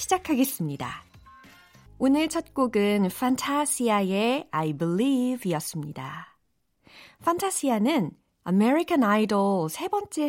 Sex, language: female, Korean